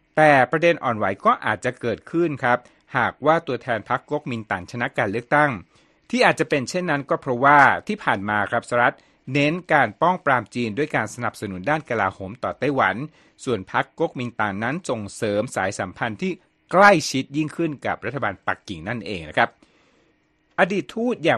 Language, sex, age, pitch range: Thai, male, 60-79, 110-150 Hz